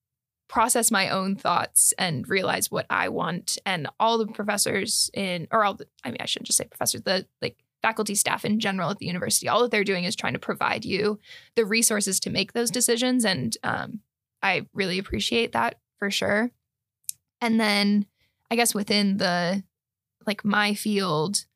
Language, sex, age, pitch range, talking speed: Finnish, female, 10-29, 190-225 Hz, 180 wpm